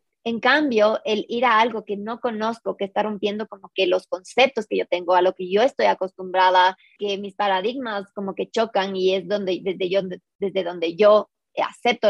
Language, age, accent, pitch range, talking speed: Spanish, 30-49, Mexican, 195-230 Hz, 200 wpm